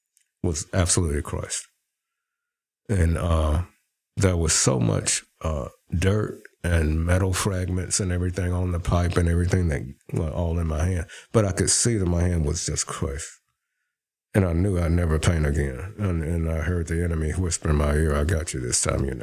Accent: American